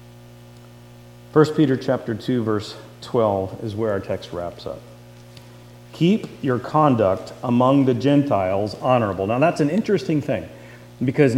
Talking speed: 130 wpm